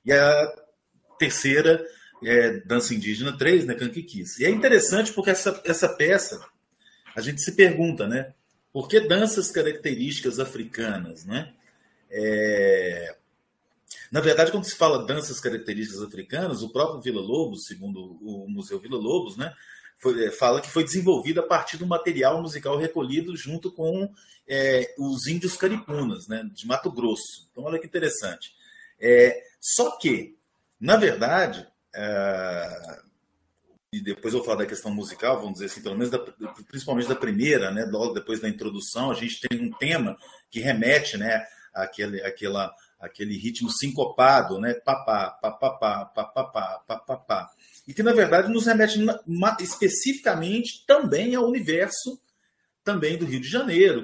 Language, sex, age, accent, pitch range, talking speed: Portuguese, male, 40-59, Brazilian, 120-195 Hz, 145 wpm